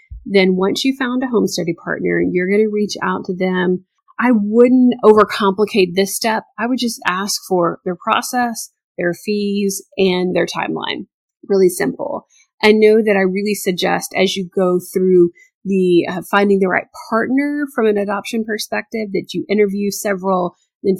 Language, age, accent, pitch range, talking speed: English, 30-49, American, 185-225 Hz, 170 wpm